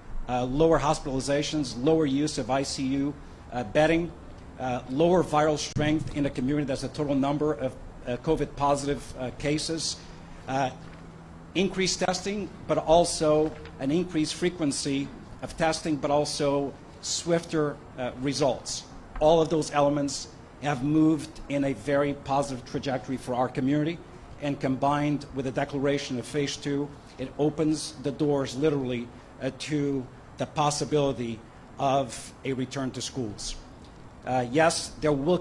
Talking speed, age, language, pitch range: 135 wpm, 50-69, English, 130-155 Hz